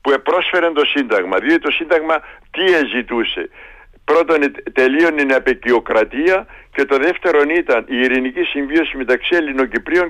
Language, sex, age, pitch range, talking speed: Greek, male, 60-79, 125-170 Hz, 135 wpm